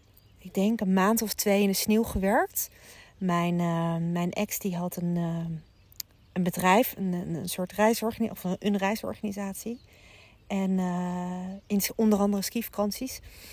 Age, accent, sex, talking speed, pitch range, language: 40-59, Dutch, female, 145 wpm, 185-220 Hz, Dutch